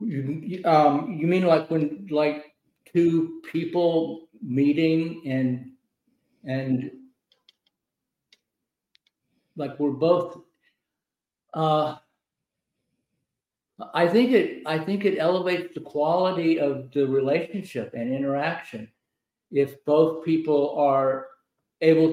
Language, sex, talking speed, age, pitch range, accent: English, male, 95 wpm, 60-79, 135-165 Hz, American